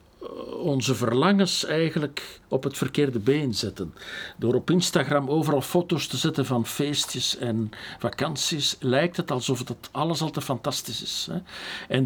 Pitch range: 115-145 Hz